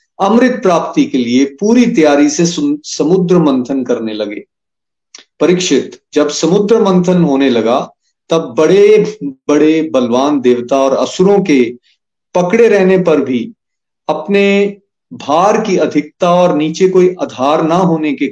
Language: Hindi